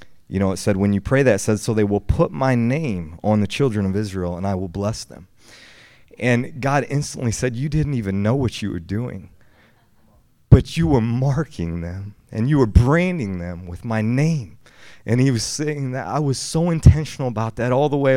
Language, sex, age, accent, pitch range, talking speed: English, male, 30-49, American, 105-140 Hz, 215 wpm